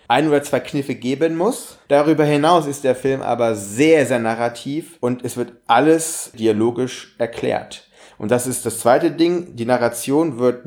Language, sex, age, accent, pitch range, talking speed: German, male, 30-49, German, 115-155 Hz, 170 wpm